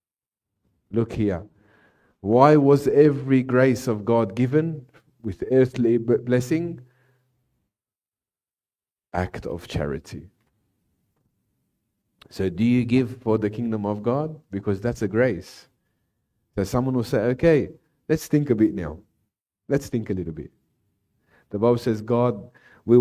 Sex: male